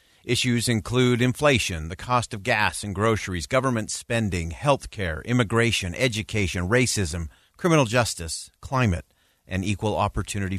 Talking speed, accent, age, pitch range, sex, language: 125 wpm, American, 50-69, 95-130 Hz, male, English